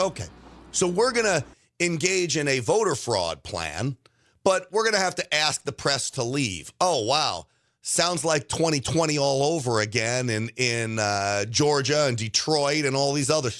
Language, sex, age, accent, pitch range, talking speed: English, male, 40-59, American, 125-175 Hz, 175 wpm